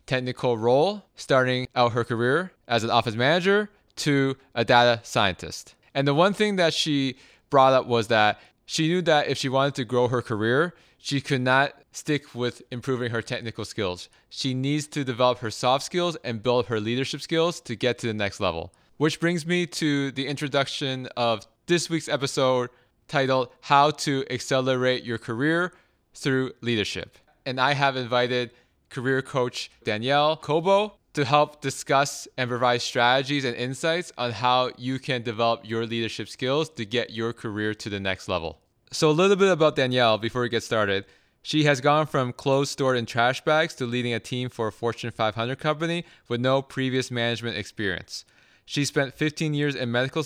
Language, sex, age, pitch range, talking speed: English, male, 20-39, 120-145 Hz, 180 wpm